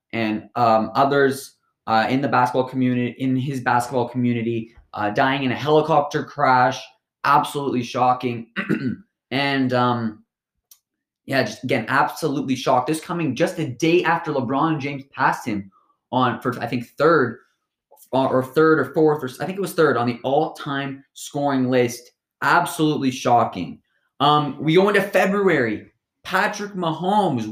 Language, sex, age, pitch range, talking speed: English, male, 20-39, 130-165 Hz, 145 wpm